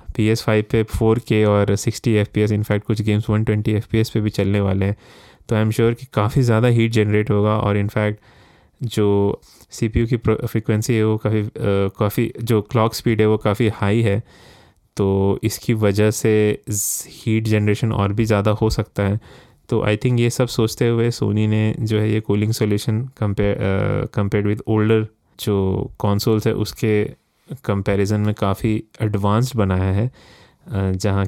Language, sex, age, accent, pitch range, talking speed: Hindi, male, 20-39, native, 105-115 Hz, 165 wpm